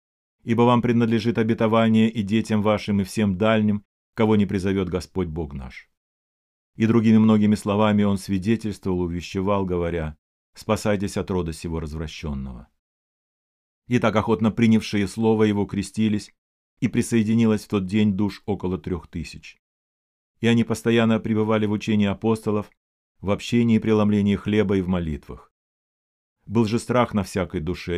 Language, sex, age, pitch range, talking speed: Russian, male, 40-59, 85-110 Hz, 140 wpm